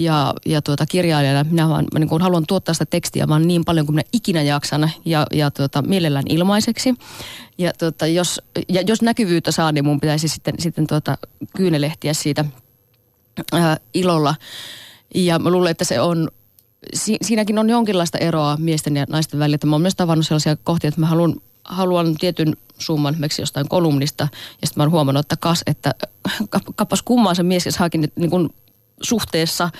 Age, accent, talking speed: 30-49, native, 170 wpm